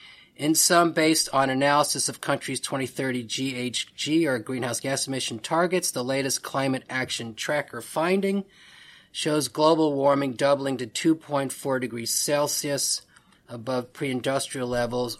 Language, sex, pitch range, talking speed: English, male, 125-150 Hz, 120 wpm